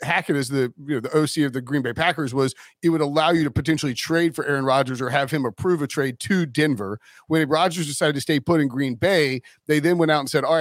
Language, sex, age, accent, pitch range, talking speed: English, male, 40-59, American, 135-170 Hz, 255 wpm